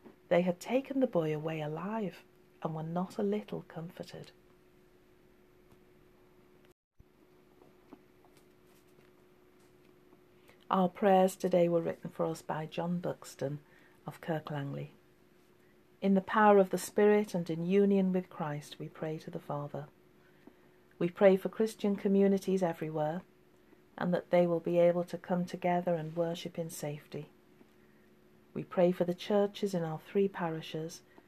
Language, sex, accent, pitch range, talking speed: English, female, British, 150-190 Hz, 130 wpm